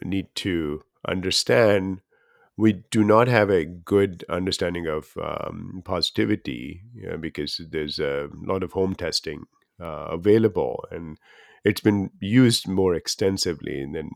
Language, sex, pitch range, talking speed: English, male, 85-105 Hz, 130 wpm